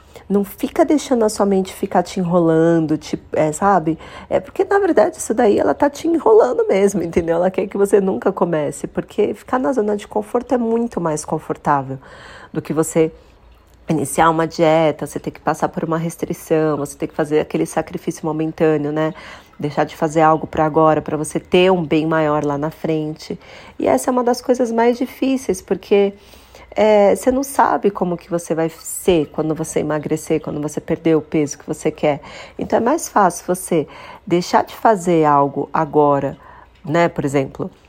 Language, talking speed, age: Portuguese, 185 wpm, 40-59